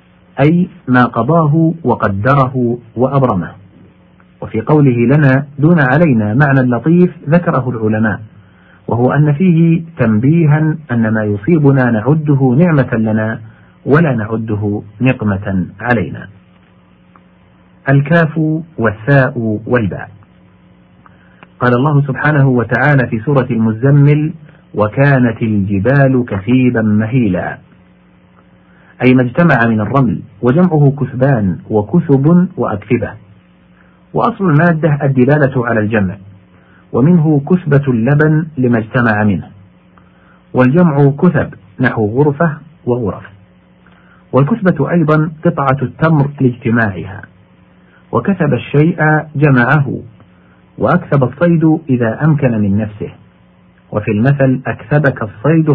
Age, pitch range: 50-69, 110-150 Hz